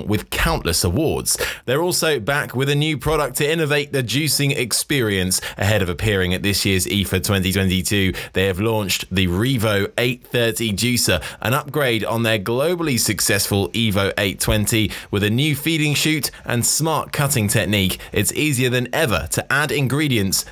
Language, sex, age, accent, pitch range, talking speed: English, male, 20-39, British, 95-130 Hz, 160 wpm